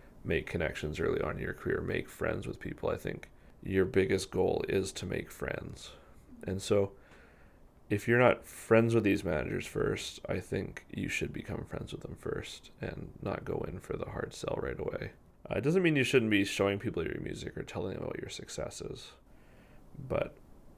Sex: male